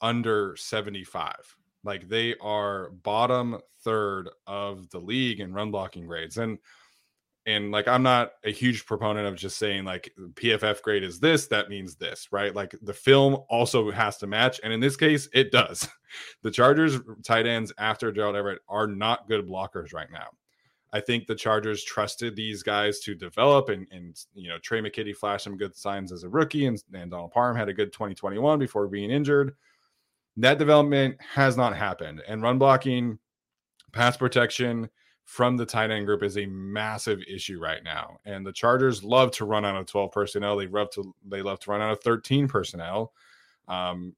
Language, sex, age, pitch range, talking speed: English, male, 20-39, 100-125 Hz, 185 wpm